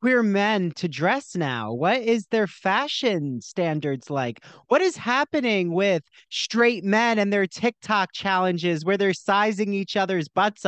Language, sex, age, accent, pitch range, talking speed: English, male, 30-49, American, 150-215 Hz, 150 wpm